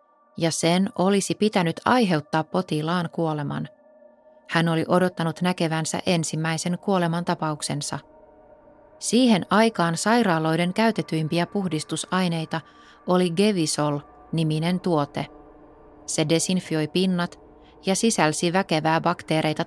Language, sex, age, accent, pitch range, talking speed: Finnish, female, 30-49, native, 155-185 Hz, 90 wpm